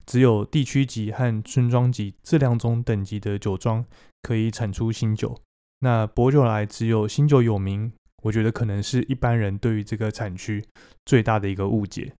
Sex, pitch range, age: male, 105-125 Hz, 20-39